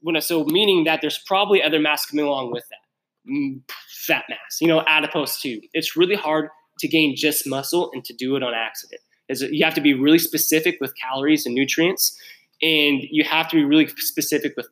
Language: English